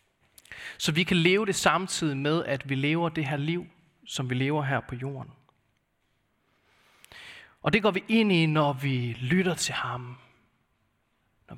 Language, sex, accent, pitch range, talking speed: Danish, male, native, 120-165 Hz, 160 wpm